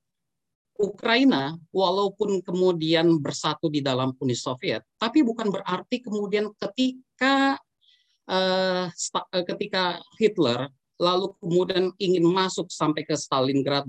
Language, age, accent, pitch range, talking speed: Indonesian, 40-59, native, 155-240 Hz, 110 wpm